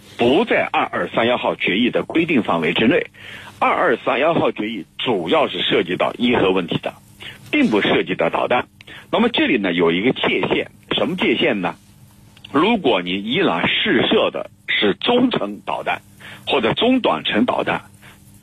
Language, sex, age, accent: Chinese, male, 50-69, native